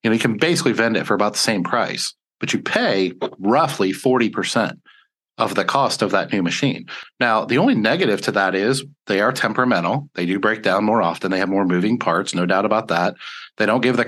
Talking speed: 225 wpm